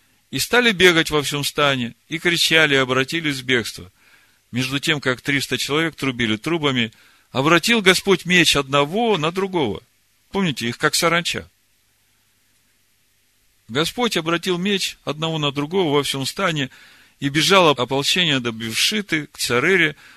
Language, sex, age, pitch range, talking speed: Russian, male, 40-59, 100-145 Hz, 135 wpm